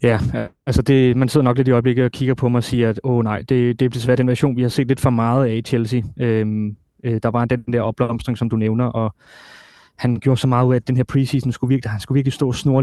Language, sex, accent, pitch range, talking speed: Danish, male, native, 120-140 Hz, 280 wpm